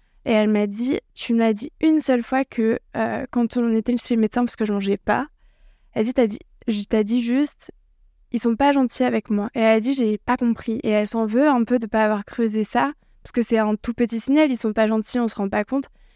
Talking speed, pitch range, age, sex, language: 280 wpm, 220-260 Hz, 20-39, female, French